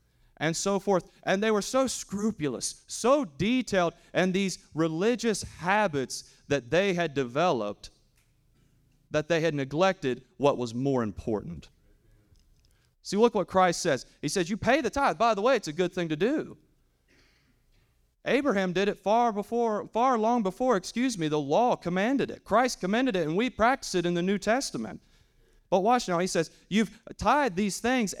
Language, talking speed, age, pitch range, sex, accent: English, 170 wpm, 30-49, 140-210 Hz, male, American